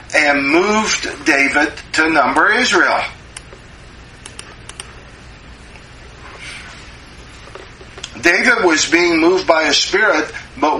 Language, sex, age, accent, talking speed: English, male, 50-69, American, 80 wpm